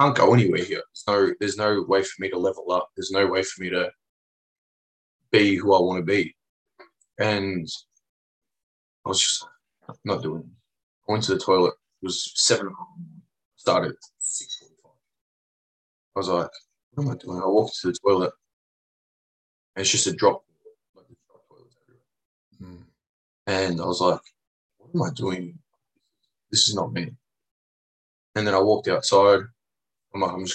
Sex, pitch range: male, 90-105 Hz